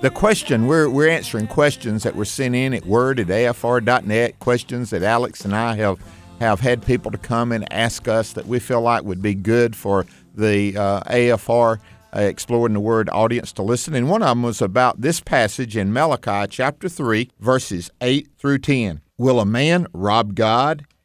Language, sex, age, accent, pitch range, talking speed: English, male, 50-69, American, 105-135 Hz, 190 wpm